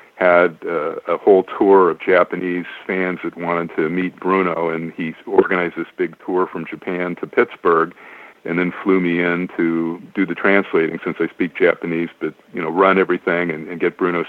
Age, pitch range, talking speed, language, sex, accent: 50-69, 85-100 Hz, 190 wpm, English, male, American